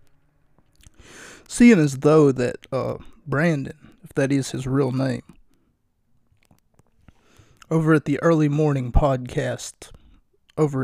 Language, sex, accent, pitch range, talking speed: English, male, American, 125-150 Hz, 105 wpm